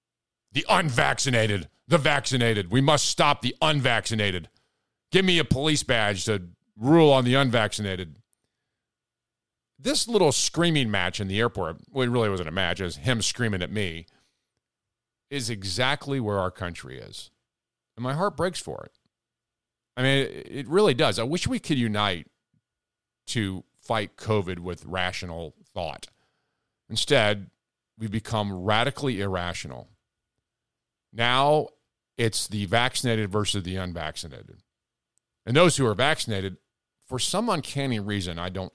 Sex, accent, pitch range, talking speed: male, American, 100-145 Hz, 140 wpm